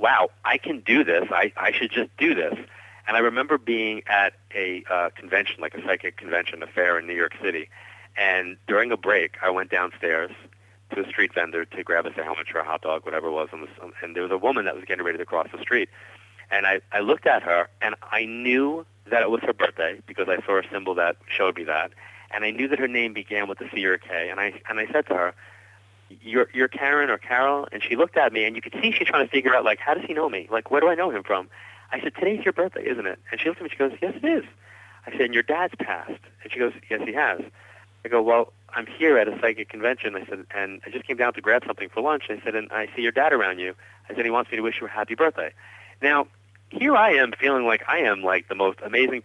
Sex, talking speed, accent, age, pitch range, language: male, 275 wpm, American, 40-59, 100-120 Hz, English